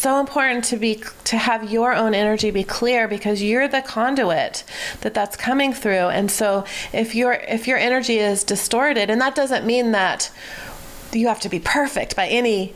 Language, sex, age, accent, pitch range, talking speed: English, female, 30-49, American, 185-230 Hz, 190 wpm